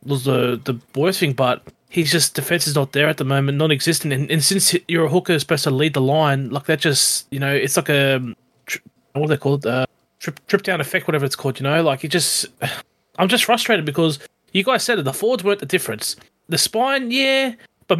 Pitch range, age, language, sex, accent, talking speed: 140-175 Hz, 20-39, English, male, Australian, 235 wpm